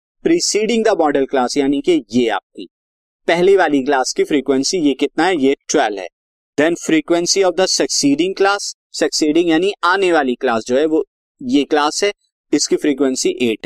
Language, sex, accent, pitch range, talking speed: Hindi, male, native, 145-225 Hz, 165 wpm